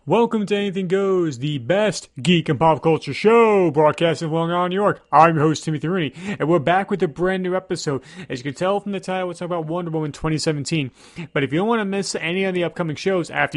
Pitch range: 150-185 Hz